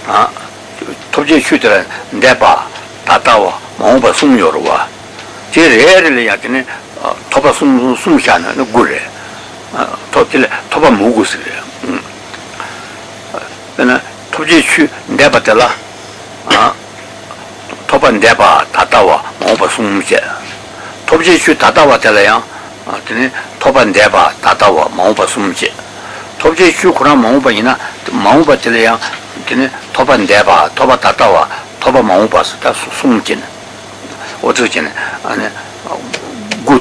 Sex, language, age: male, Italian, 60-79